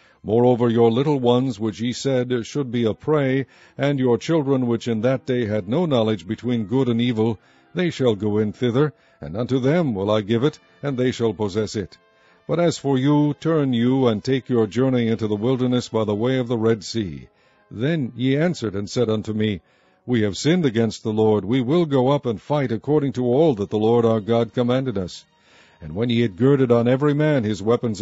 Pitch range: 110-135 Hz